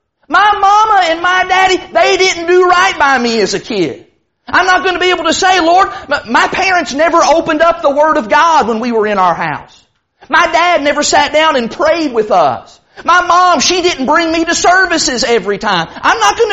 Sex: male